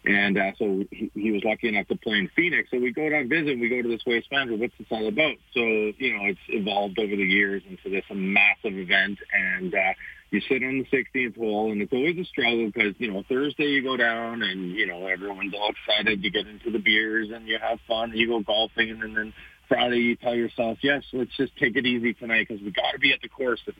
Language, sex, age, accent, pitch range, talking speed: English, male, 40-59, American, 100-120 Hz, 250 wpm